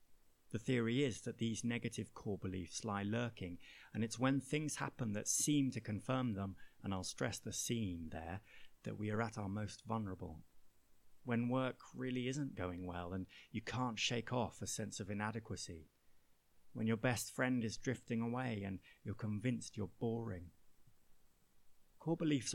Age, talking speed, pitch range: 30-49, 165 wpm, 100-130 Hz